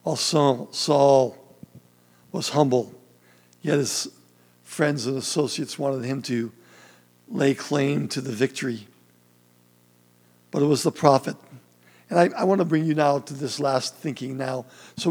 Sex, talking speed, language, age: male, 145 wpm, English, 60-79